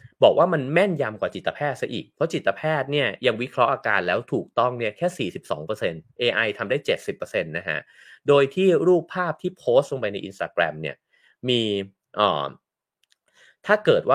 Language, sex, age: English, male, 30-49